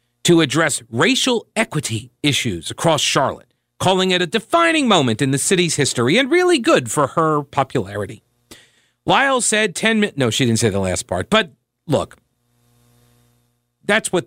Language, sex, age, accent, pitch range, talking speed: English, male, 50-69, American, 120-165 Hz, 155 wpm